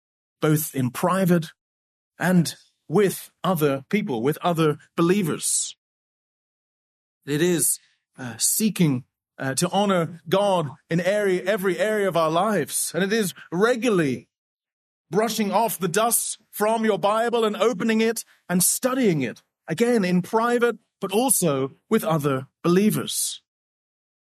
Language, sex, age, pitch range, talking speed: English, male, 30-49, 160-220 Hz, 120 wpm